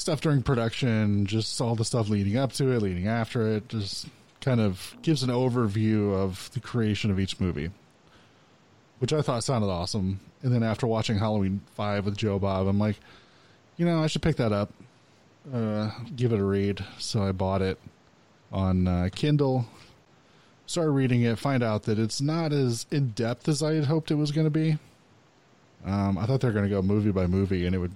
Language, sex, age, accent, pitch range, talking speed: English, male, 20-39, American, 100-125 Hz, 200 wpm